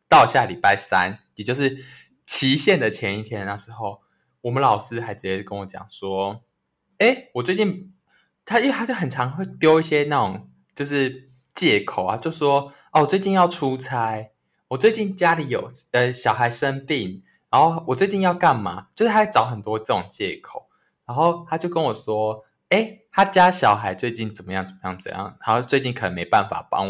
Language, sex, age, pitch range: Chinese, male, 20-39, 110-165 Hz